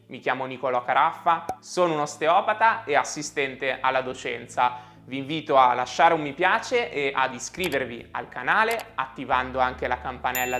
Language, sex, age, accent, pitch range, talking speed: Italian, male, 20-39, native, 130-200 Hz, 155 wpm